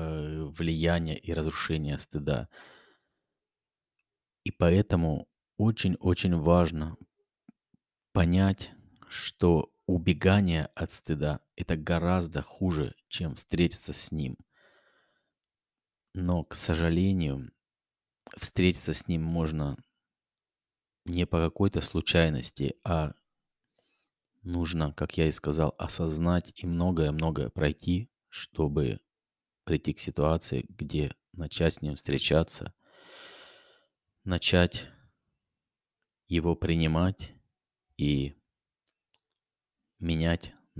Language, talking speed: Russian, 80 wpm